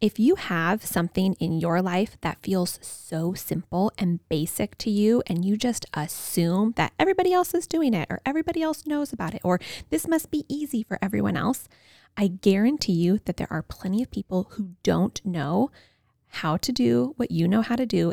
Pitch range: 175-250 Hz